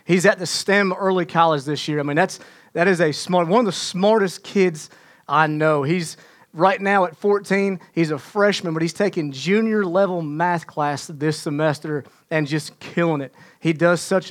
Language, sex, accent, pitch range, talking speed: English, male, American, 160-190 Hz, 195 wpm